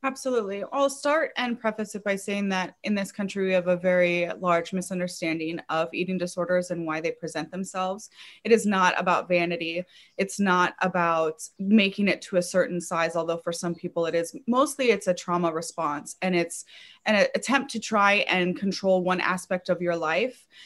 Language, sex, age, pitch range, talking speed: English, female, 20-39, 170-205 Hz, 185 wpm